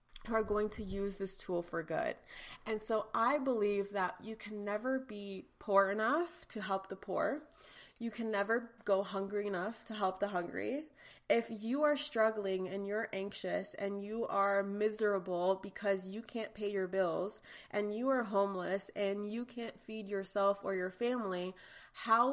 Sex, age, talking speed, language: female, 20-39, 170 wpm, English